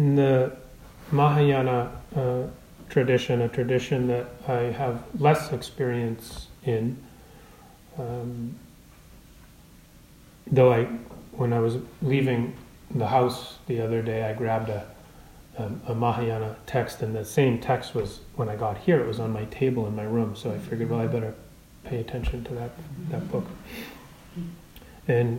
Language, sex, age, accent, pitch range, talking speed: English, male, 30-49, American, 115-135 Hz, 145 wpm